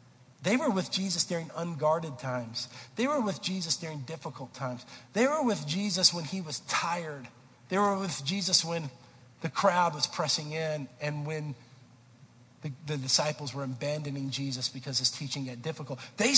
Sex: male